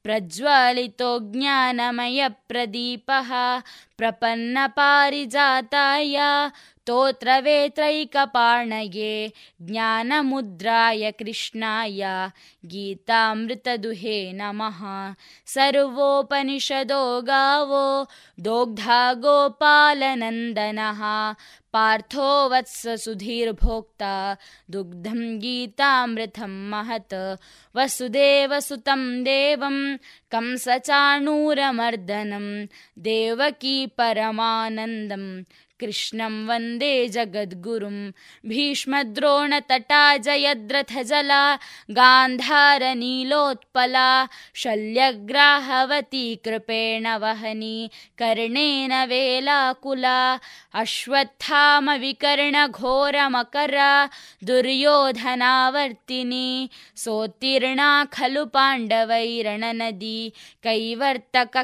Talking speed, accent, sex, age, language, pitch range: 35 wpm, native, female, 20-39, Kannada, 225-275 Hz